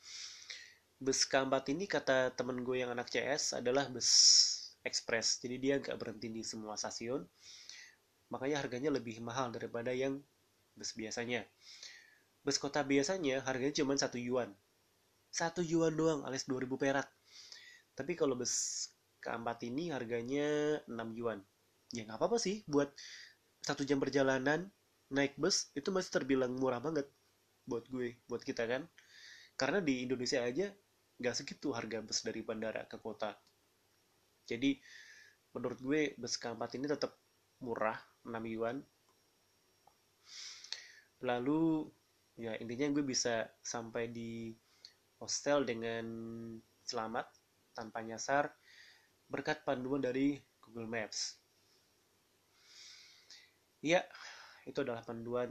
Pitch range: 115-145 Hz